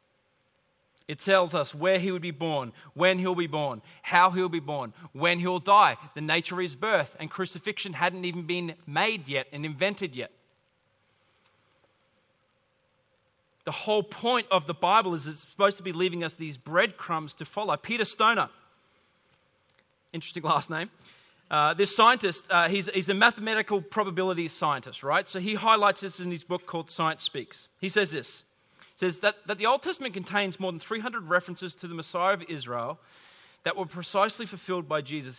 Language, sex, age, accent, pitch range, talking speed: English, male, 30-49, Australian, 165-205 Hz, 175 wpm